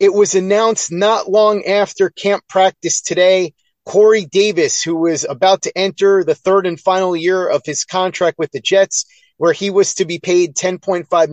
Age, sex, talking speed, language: 30-49, male, 180 wpm, English